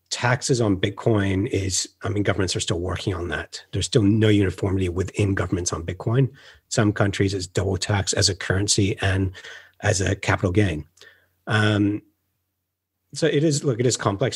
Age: 40-59